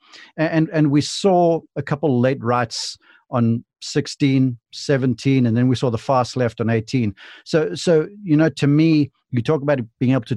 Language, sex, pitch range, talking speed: English, male, 115-140 Hz, 185 wpm